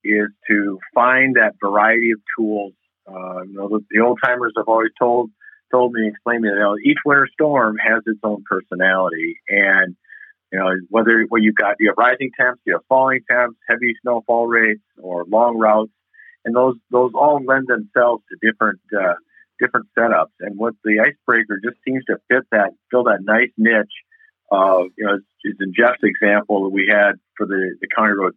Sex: male